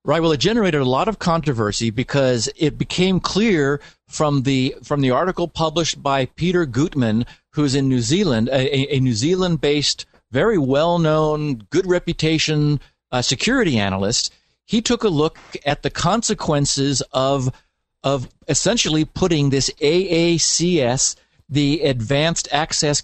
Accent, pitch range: American, 135-170 Hz